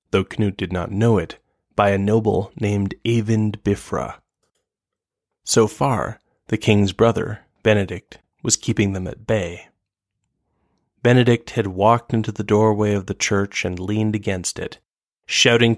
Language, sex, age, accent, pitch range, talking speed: English, male, 20-39, American, 100-115 Hz, 140 wpm